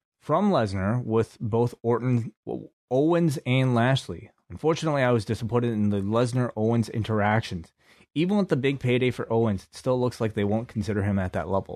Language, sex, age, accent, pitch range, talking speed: English, male, 30-49, American, 100-125 Hz, 175 wpm